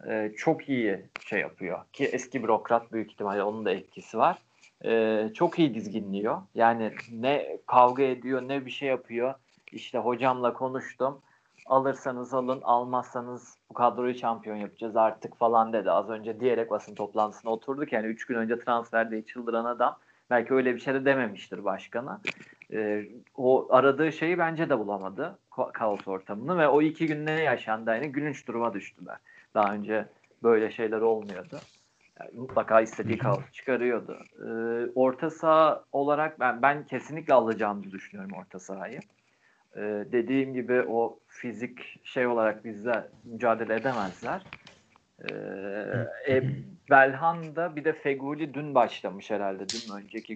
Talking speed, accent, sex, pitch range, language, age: 145 wpm, native, male, 110-135 Hz, Turkish, 40-59